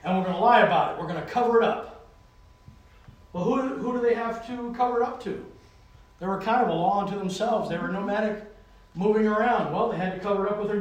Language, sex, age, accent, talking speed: English, male, 40-59, American, 245 wpm